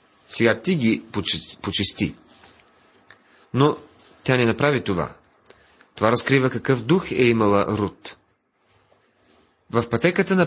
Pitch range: 100-135 Hz